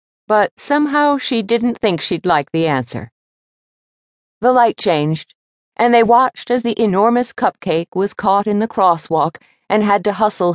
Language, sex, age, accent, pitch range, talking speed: English, female, 50-69, American, 145-205 Hz, 160 wpm